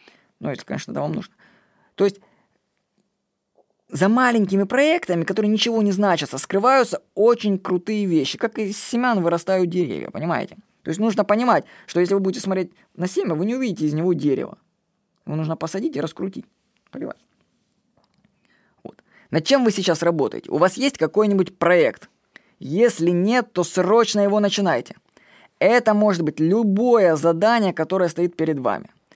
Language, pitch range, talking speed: Russian, 170-220 Hz, 150 wpm